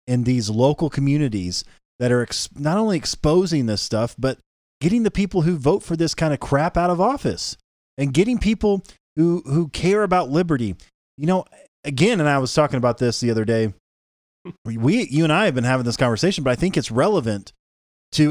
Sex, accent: male, American